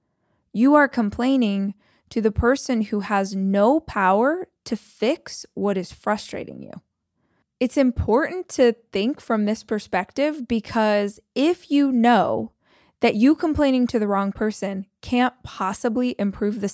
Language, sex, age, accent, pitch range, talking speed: English, female, 20-39, American, 205-275 Hz, 135 wpm